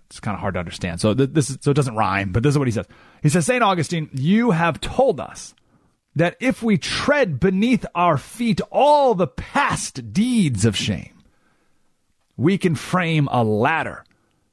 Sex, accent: male, American